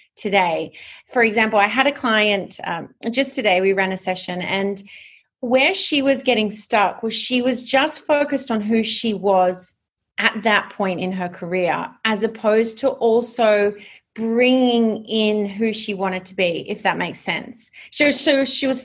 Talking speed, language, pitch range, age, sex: 170 wpm, English, 200-260 Hz, 30-49, female